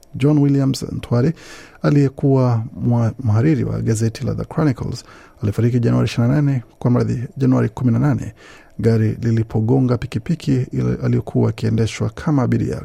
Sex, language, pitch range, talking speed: male, Swahili, 115-135 Hz, 105 wpm